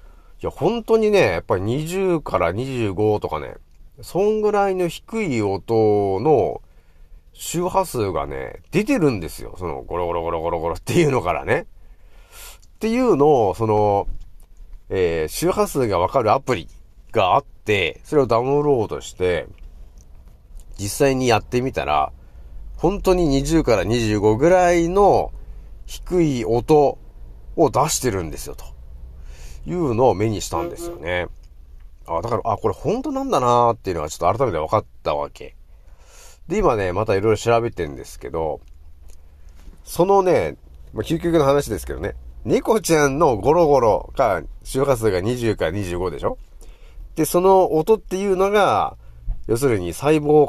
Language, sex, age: Japanese, male, 40-59